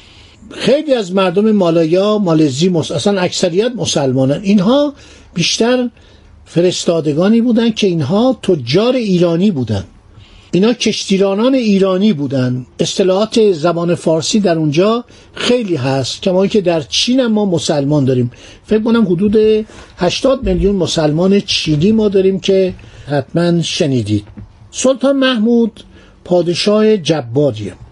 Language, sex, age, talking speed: Persian, male, 60-79, 115 wpm